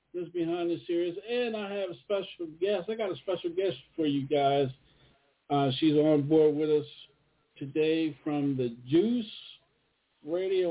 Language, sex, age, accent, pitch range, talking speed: English, male, 50-69, American, 130-165 Hz, 165 wpm